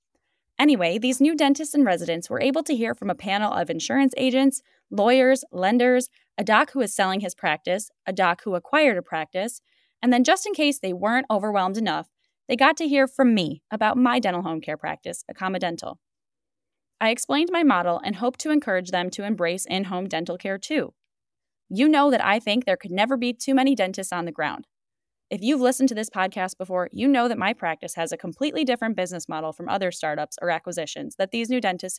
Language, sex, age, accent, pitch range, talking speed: English, female, 10-29, American, 185-260 Hz, 210 wpm